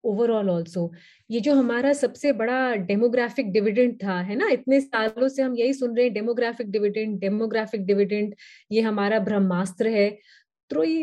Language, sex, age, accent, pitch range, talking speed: Hindi, female, 30-49, native, 215-275 Hz, 160 wpm